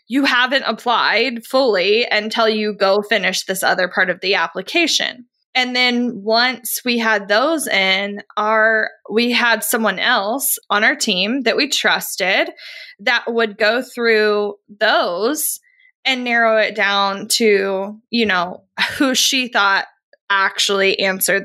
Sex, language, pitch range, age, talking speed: female, English, 200-255 Hz, 20-39, 135 wpm